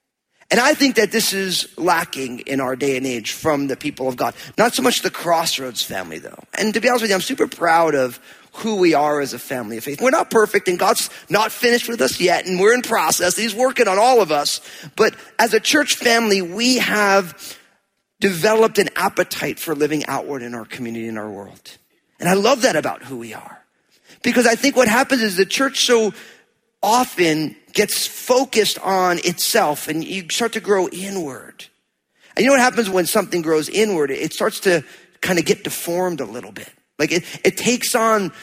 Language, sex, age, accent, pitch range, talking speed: English, male, 40-59, American, 155-225 Hz, 210 wpm